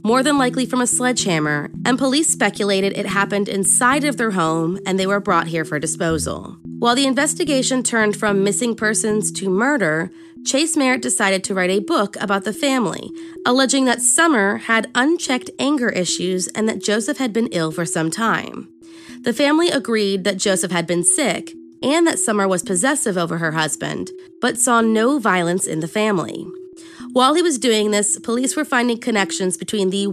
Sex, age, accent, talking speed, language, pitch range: female, 20-39, American, 180 wpm, English, 185-255 Hz